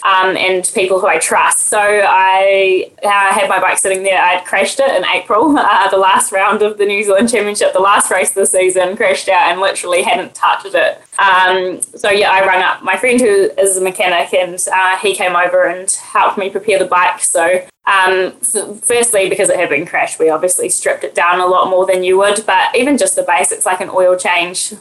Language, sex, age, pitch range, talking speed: English, female, 10-29, 180-205 Hz, 225 wpm